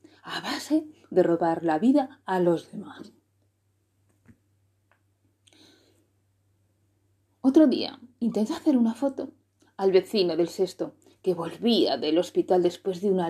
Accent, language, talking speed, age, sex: Spanish, Spanish, 115 wpm, 30-49, female